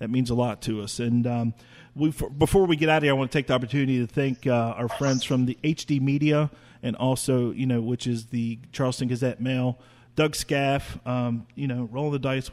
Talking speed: 225 wpm